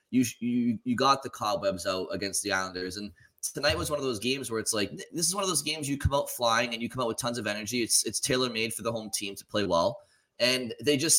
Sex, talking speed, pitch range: male, 275 wpm, 100-125 Hz